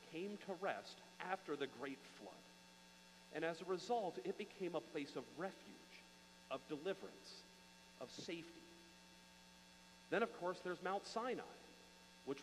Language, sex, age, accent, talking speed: English, male, 40-59, American, 135 wpm